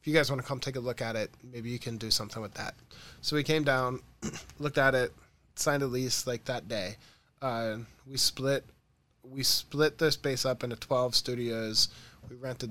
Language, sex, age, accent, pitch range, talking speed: English, male, 20-39, American, 110-130 Hz, 200 wpm